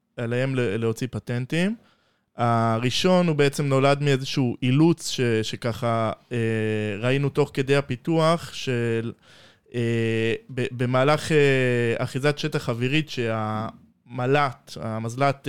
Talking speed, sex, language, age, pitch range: 95 wpm, male, Hebrew, 20-39, 120-145 Hz